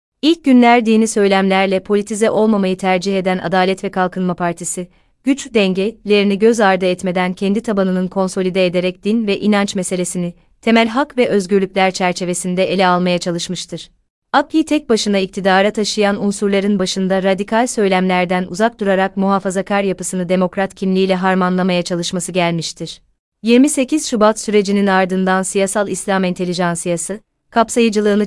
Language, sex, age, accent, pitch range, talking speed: Turkish, female, 30-49, native, 185-210 Hz, 125 wpm